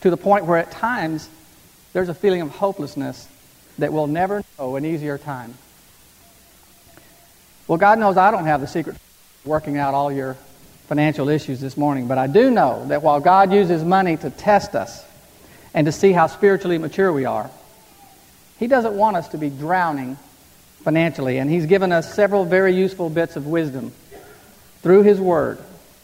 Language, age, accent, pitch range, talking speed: English, 50-69, American, 145-190 Hz, 175 wpm